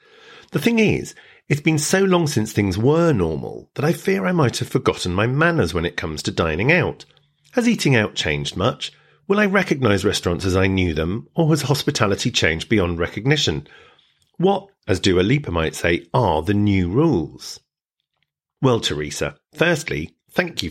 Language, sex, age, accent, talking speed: English, male, 40-59, British, 175 wpm